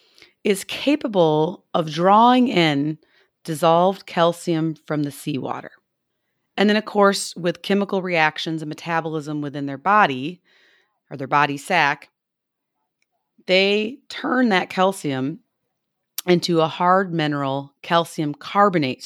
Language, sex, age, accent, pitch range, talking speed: English, female, 30-49, American, 155-190 Hz, 115 wpm